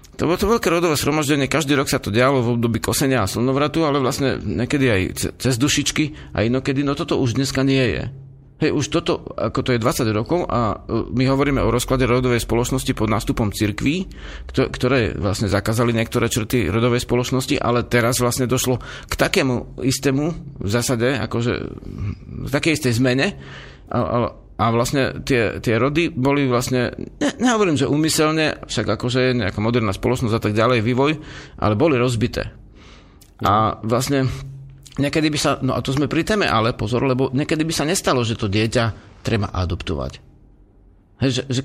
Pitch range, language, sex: 115-140 Hz, Slovak, male